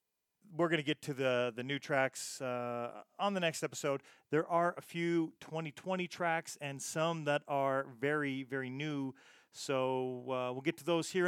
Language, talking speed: English, 180 wpm